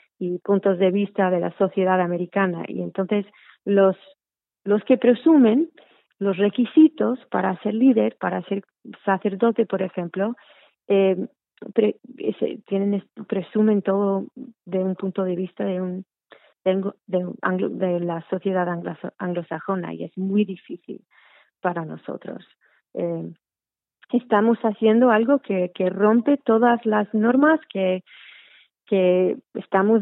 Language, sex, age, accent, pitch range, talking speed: Spanish, female, 30-49, Spanish, 185-220 Hz, 125 wpm